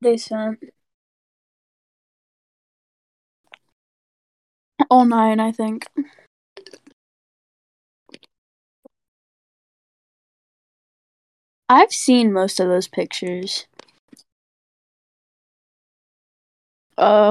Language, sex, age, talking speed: English, female, 20-39, 45 wpm